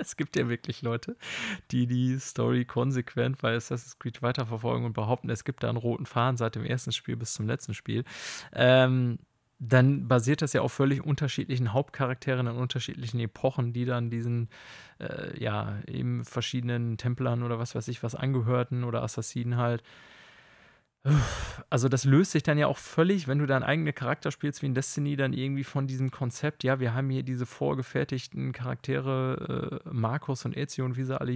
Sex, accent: male, German